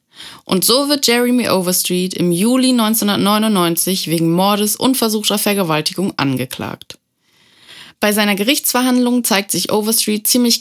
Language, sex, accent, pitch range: German, female, German, 175-230 Hz